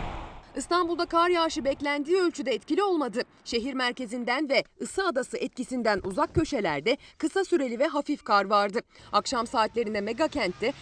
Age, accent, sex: 40-59, native, female